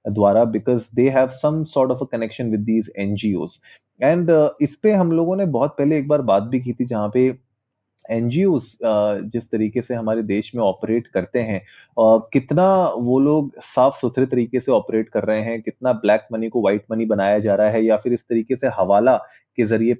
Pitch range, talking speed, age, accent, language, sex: 110-130 Hz, 190 wpm, 20-39, native, Hindi, male